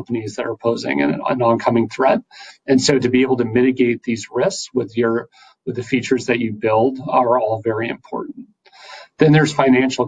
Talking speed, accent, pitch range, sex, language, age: 190 wpm, American, 120-140 Hz, male, English, 40-59